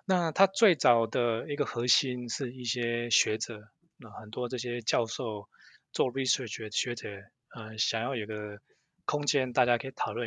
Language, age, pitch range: Chinese, 20-39, 115-135 Hz